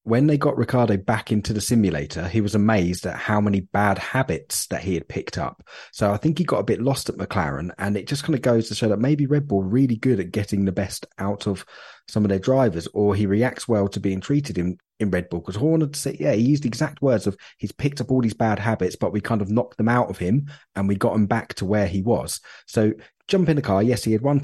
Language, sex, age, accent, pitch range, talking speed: English, male, 30-49, British, 100-125 Hz, 270 wpm